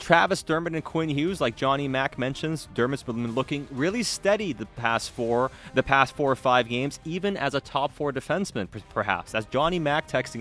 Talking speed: 195 wpm